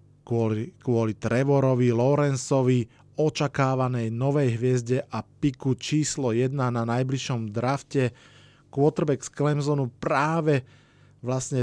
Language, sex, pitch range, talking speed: Slovak, male, 125-140 Hz, 95 wpm